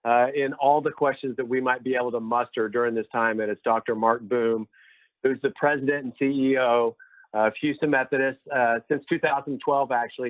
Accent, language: American, English